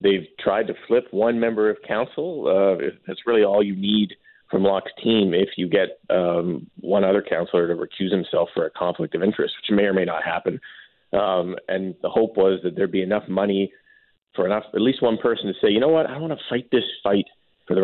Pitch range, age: 95-125 Hz, 40-59